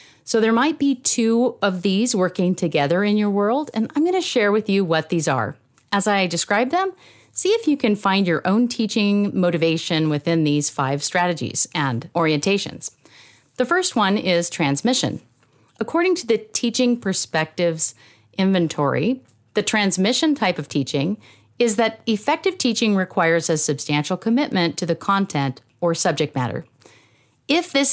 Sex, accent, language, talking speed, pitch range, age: female, American, English, 155 wpm, 155-225 Hz, 40-59